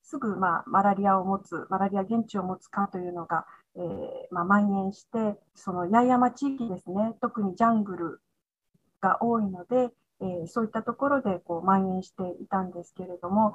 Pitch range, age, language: 185-240 Hz, 40-59, Japanese